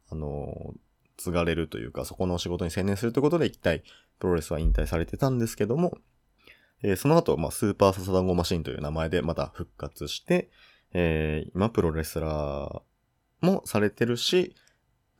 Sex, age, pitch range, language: male, 20-39, 80-120 Hz, Japanese